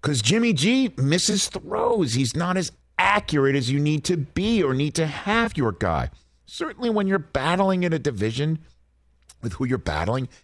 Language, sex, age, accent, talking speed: English, male, 50-69, American, 180 wpm